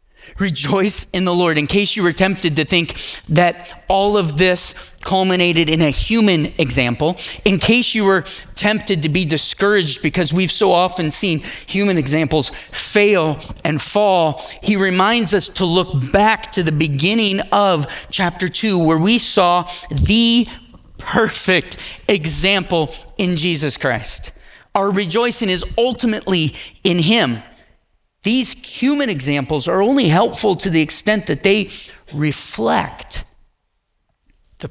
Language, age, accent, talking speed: English, 30-49, American, 135 wpm